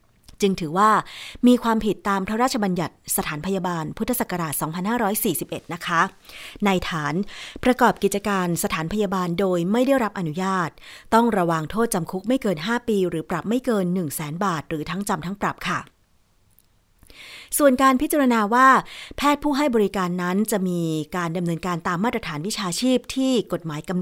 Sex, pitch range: female, 165-220 Hz